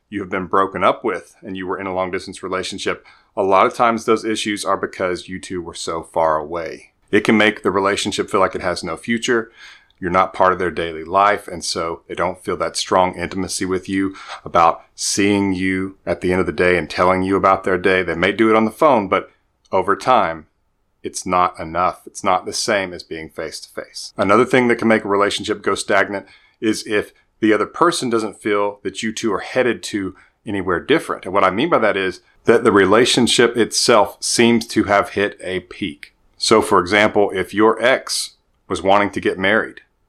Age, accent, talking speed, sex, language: 30-49, American, 215 wpm, male, English